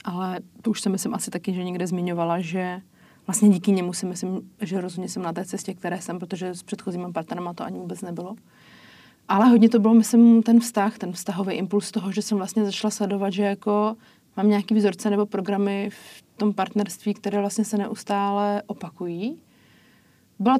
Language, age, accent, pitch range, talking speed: Czech, 30-49, native, 185-215 Hz, 180 wpm